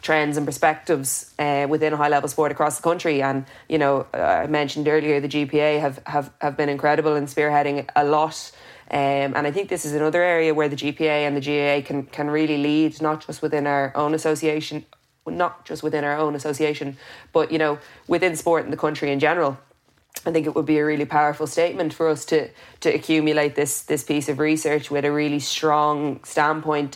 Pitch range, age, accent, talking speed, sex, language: 145-155 Hz, 20-39, Irish, 205 wpm, female, English